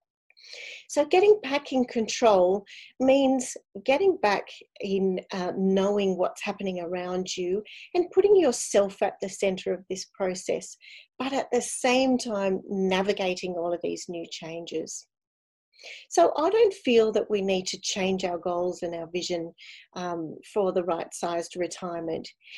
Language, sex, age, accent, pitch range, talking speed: English, female, 40-59, Australian, 185-250 Hz, 145 wpm